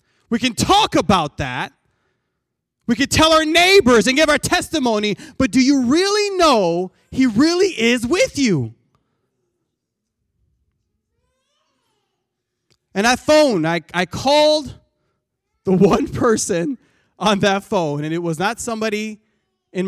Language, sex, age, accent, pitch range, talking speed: English, male, 20-39, American, 135-215 Hz, 125 wpm